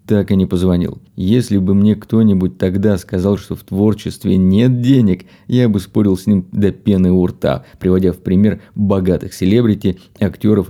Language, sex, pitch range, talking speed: Russian, male, 95-110 Hz, 170 wpm